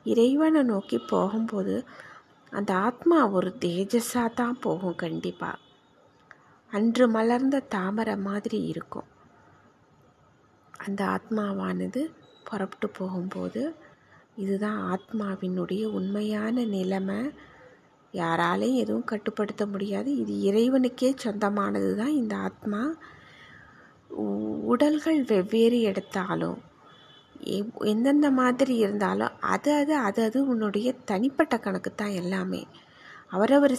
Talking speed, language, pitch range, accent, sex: 90 wpm, Tamil, 195-245 Hz, native, female